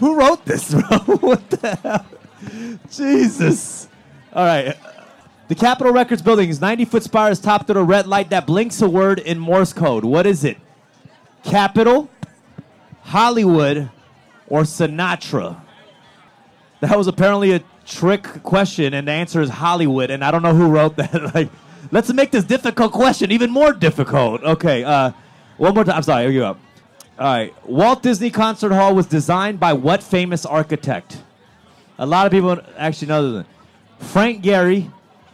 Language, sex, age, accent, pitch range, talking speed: English, male, 30-49, American, 155-210 Hz, 160 wpm